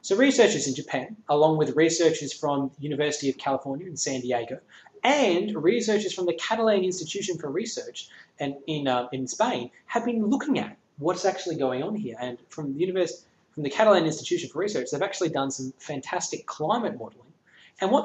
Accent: Australian